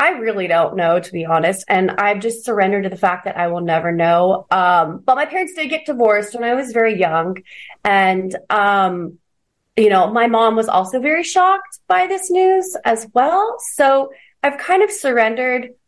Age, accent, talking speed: 30-49, American, 195 wpm